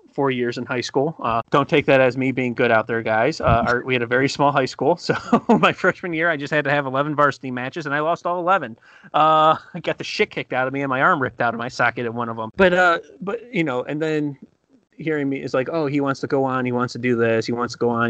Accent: American